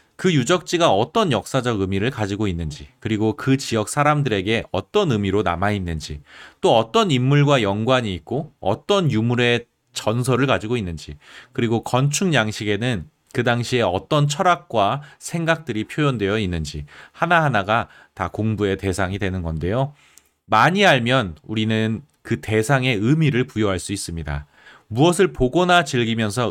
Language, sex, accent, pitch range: Korean, male, native, 100-140 Hz